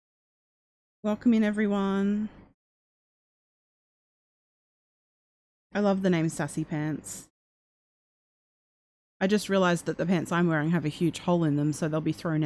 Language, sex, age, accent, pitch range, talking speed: English, female, 20-39, Australian, 160-215 Hz, 130 wpm